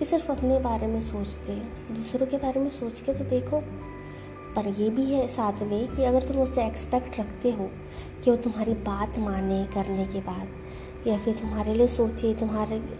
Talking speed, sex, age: 200 wpm, female, 20-39